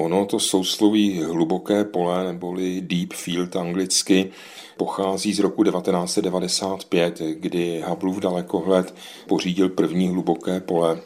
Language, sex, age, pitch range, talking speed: Czech, male, 40-59, 85-100 Hz, 115 wpm